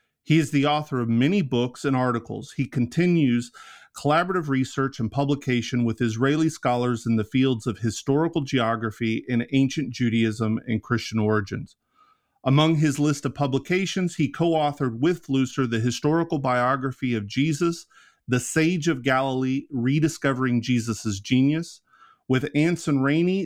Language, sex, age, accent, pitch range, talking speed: English, male, 40-59, American, 120-150 Hz, 140 wpm